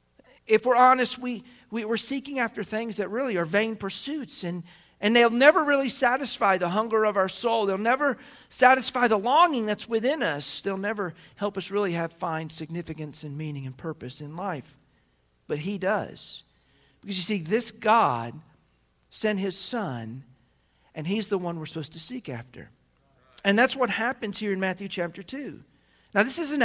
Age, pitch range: 50-69, 145-225 Hz